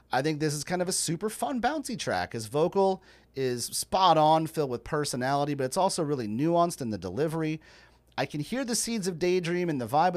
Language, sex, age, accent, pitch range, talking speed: English, male, 40-59, American, 120-170 Hz, 220 wpm